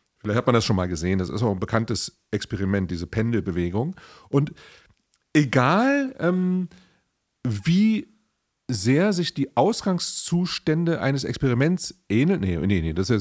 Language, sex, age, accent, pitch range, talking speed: German, male, 40-59, German, 115-190 Hz, 145 wpm